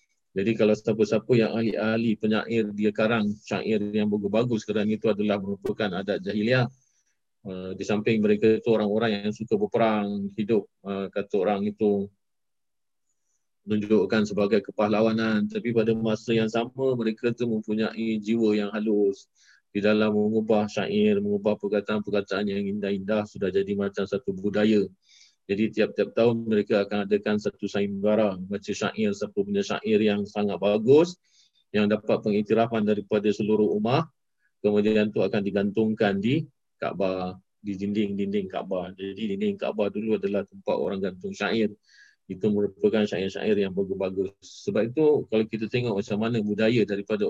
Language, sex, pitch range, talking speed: Malay, male, 100-115 Hz, 140 wpm